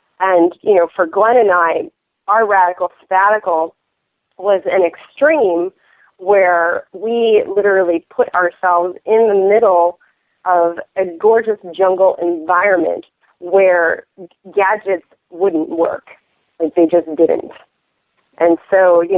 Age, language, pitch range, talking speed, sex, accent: 40-59, English, 175-225 Hz, 115 wpm, female, American